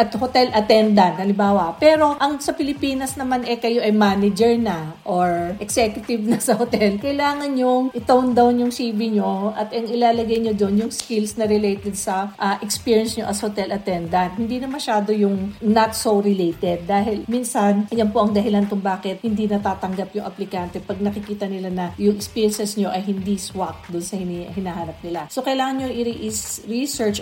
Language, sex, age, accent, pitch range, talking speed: English, female, 40-59, Filipino, 195-245 Hz, 170 wpm